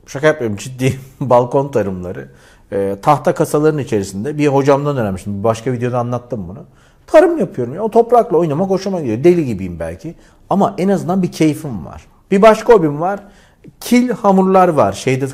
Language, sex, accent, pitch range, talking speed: Turkish, male, native, 120-180 Hz, 170 wpm